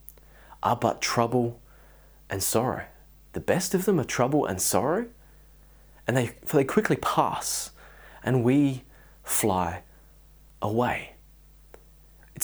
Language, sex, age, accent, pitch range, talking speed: English, male, 20-39, Australian, 120-155 Hz, 115 wpm